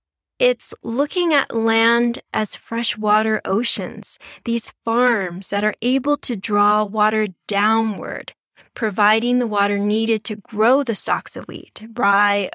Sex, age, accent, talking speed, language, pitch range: female, 10-29, American, 130 wpm, English, 205-245 Hz